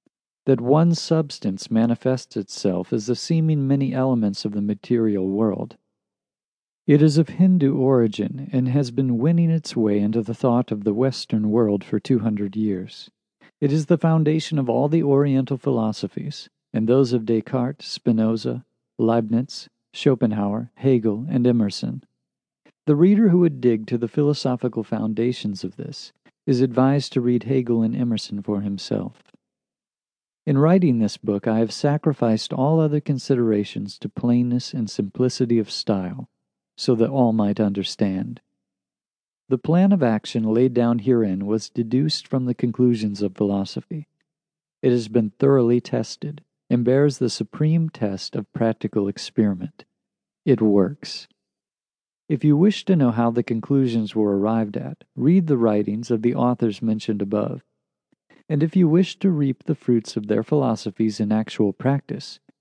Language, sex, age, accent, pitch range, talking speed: English, male, 50-69, American, 110-140 Hz, 150 wpm